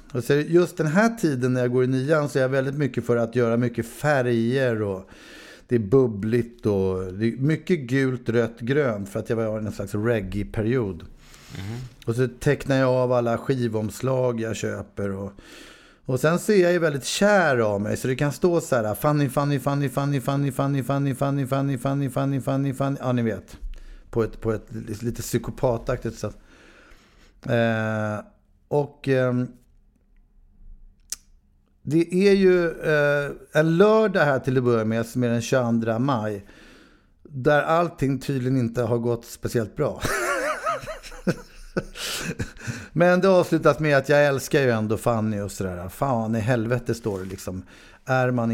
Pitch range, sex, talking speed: 110-145 Hz, male, 155 wpm